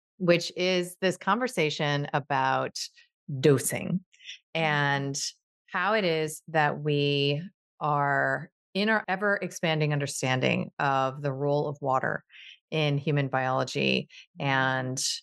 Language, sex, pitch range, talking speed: English, female, 135-165 Hz, 105 wpm